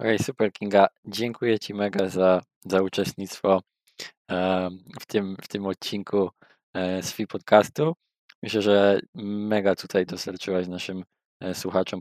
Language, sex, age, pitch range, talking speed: Polish, male, 20-39, 90-100 Hz, 120 wpm